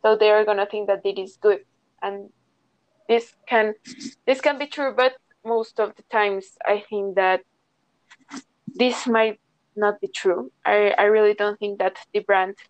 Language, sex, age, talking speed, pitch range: English, female, 20-39, 175 wpm, 200-230 Hz